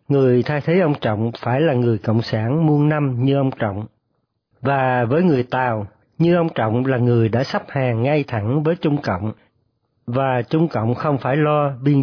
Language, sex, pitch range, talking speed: Vietnamese, male, 115-155 Hz, 195 wpm